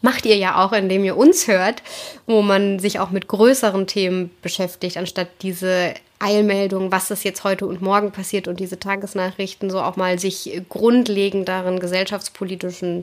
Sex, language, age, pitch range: female, German, 20-39, 190-220 Hz